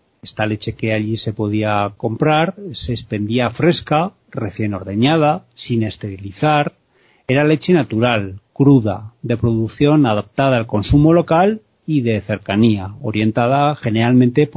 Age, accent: 40-59, Spanish